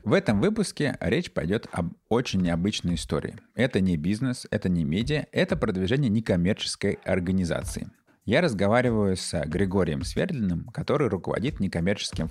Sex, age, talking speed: male, 20-39, 130 wpm